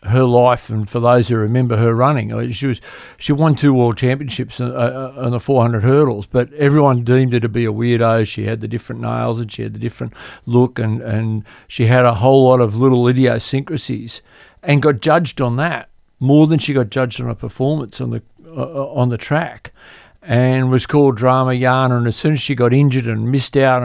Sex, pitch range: male, 120-145 Hz